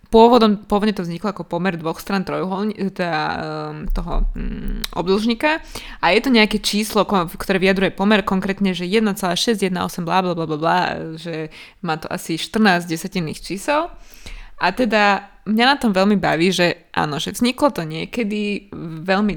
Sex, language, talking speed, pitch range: female, Slovak, 140 wpm, 175-215 Hz